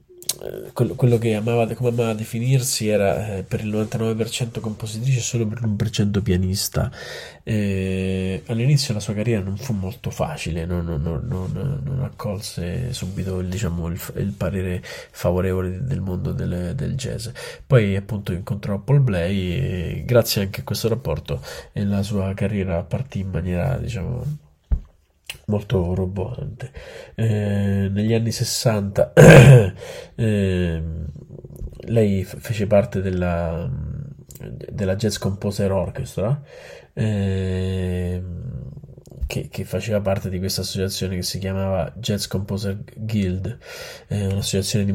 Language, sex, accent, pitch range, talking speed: Italian, male, native, 95-115 Hz, 125 wpm